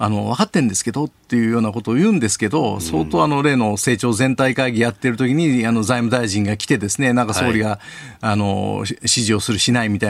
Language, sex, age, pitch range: Japanese, male, 50-69, 110-180 Hz